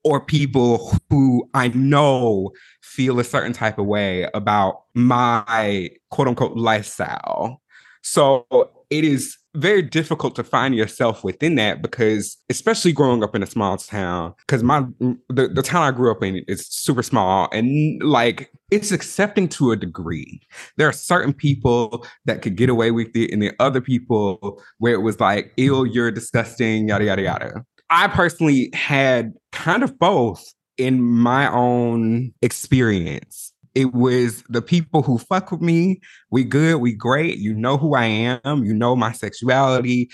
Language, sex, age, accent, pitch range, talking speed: English, male, 20-39, American, 115-140 Hz, 160 wpm